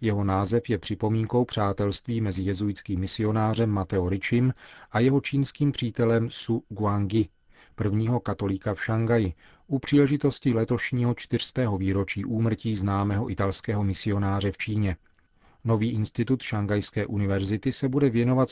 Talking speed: 125 wpm